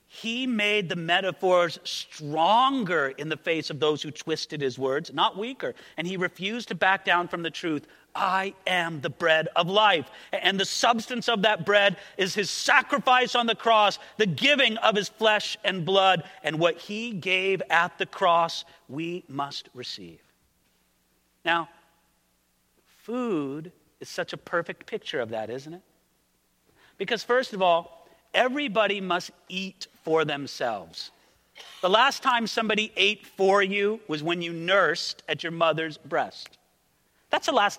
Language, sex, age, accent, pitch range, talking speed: English, male, 40-59, American, 165-225 Hz, 155 wpm